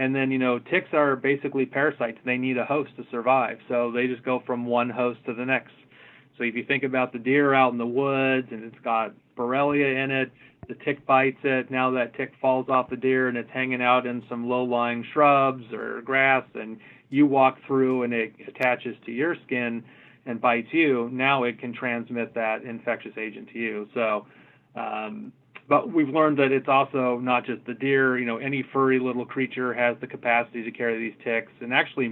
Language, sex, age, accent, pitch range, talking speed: English, male, 30-49, American, 115-130 Hz, 205 wpm